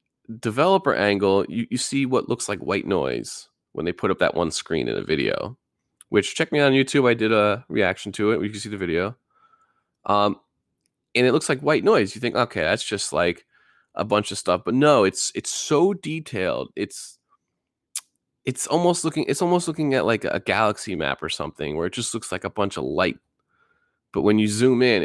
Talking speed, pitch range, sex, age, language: 210 wpm, 105-180 Hz, male, 20-39, English